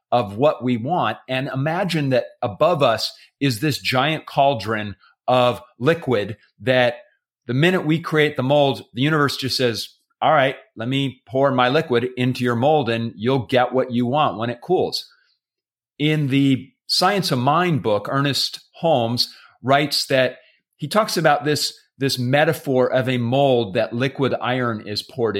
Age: 40-59